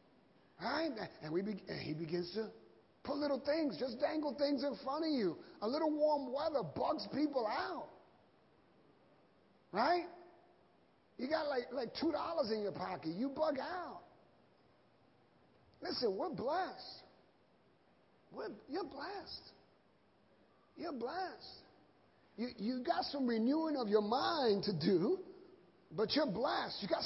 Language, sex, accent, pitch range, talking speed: English, male, American, 225-320 Hz, 135 wpm